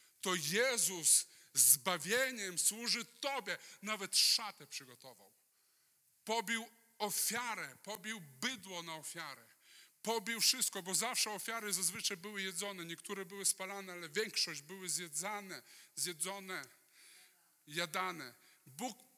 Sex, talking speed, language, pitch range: male, 100 wpm, Polish, 160-200 Hz